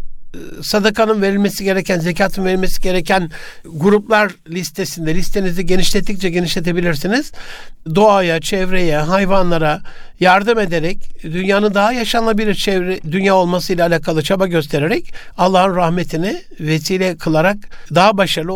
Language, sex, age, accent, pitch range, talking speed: Turkish, male, 60-79, native, 155-195 Hz, 100 wpm